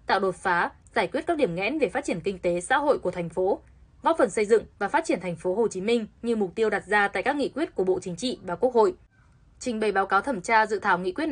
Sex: female